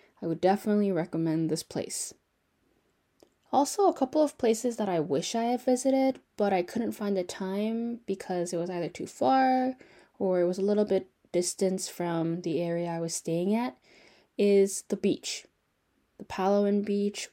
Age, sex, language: 10-29, female, Korean